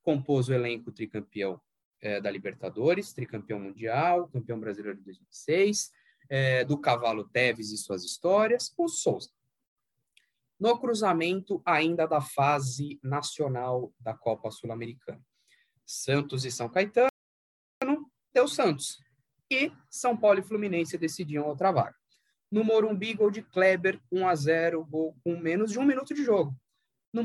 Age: 20-39